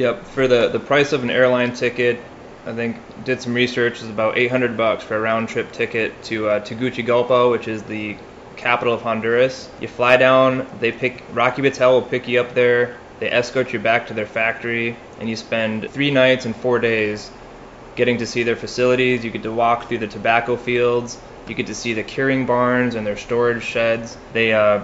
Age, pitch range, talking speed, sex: 20-39, 110-125 Hz, 205 wpm, male